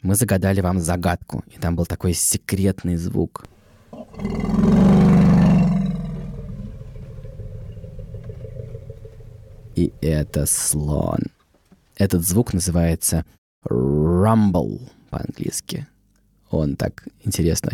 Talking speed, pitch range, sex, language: 70 wpm, 90-120 Hz, male, Russian